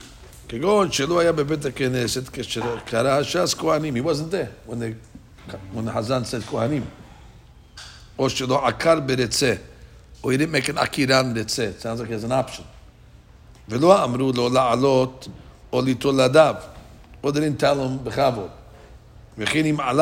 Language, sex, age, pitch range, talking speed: English, male, 60-79, 110-150 Hz, 115 wpm